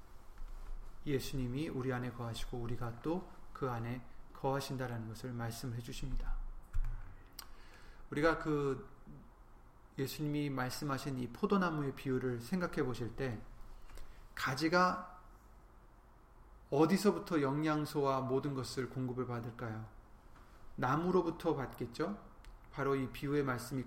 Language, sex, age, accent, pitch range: Korean, male, 30-49, native, 120-160 Hz